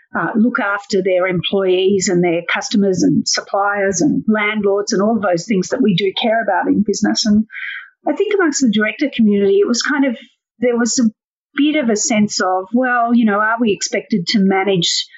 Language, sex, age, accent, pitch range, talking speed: English, female, 40-59, Australian, 185-230 Hz, 200 wpm